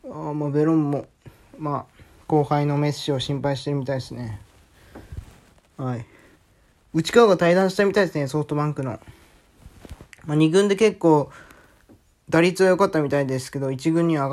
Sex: male